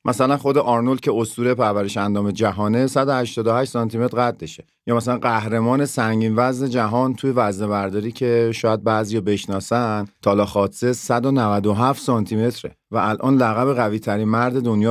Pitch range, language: 105-130 Hz, Persian